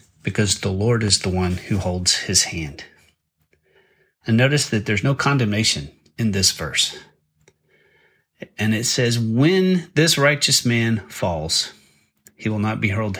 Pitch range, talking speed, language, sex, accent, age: 95-125 Hz, 145 wpm, English, male, American, 30-49